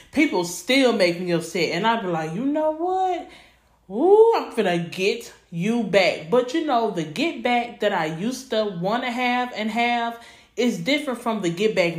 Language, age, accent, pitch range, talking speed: English, 30-49, American, 185-250 Hz, 205 wpm